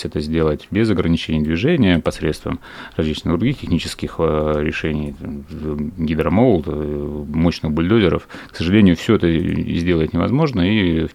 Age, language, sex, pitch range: 30-49, Russian, male, 75-90 Hz